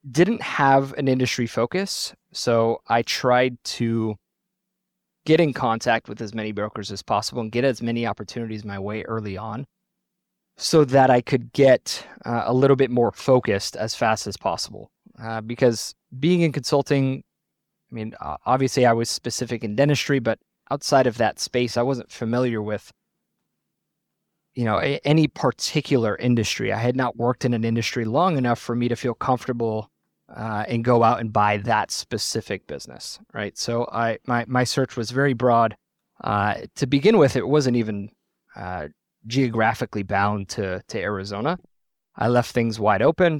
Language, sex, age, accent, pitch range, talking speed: English, male, 20-39, American, 115-135 Hz, 165 wpm